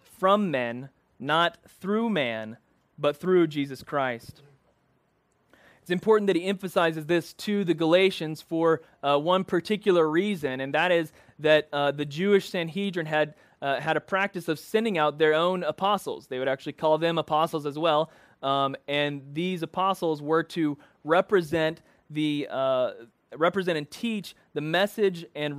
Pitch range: 150-185 Hz